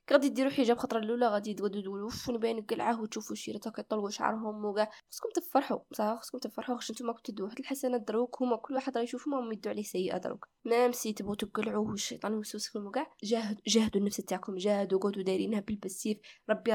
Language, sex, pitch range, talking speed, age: Arabic, female, 210-260 Hz, 180 wpm, 20-39